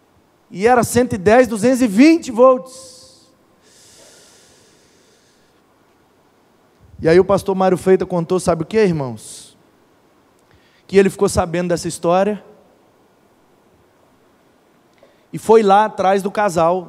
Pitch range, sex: 200-240 Hz, male